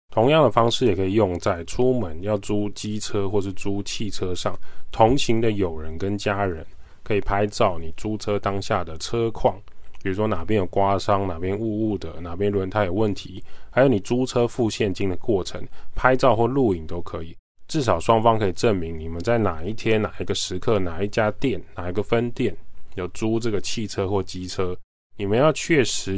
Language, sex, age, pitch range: Chinese, male, 20-39, 90-115 Hz